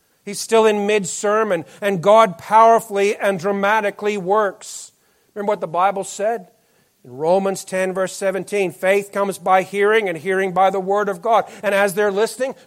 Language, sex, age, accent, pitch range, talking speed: English, male, 50-69, American, 150-205 Hz, 165 wpm